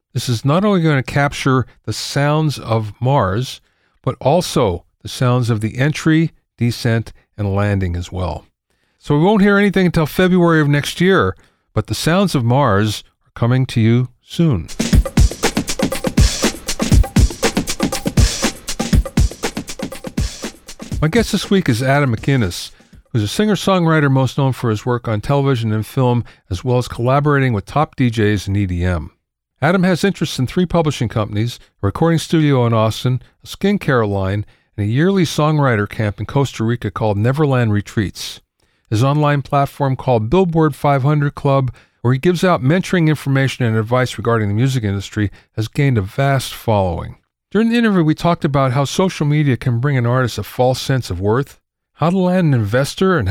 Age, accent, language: 40-59, American, English